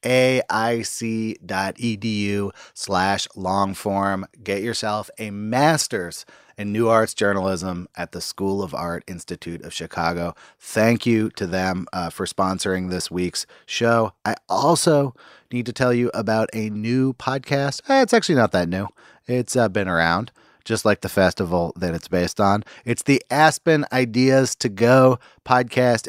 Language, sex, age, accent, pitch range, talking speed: English, male, 30-49, American, 100-135 Hz, 150 wpm